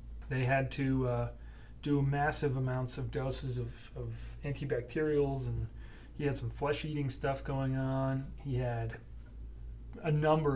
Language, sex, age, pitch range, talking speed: English, male, 30-49, 125-150 Hz, 135 wpm